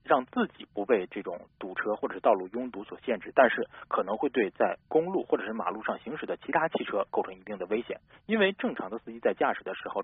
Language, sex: Chinese, male